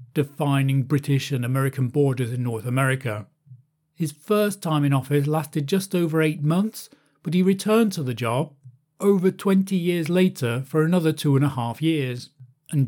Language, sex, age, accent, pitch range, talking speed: English, male, 40-59, British, 135-170 Hz, 170 wpm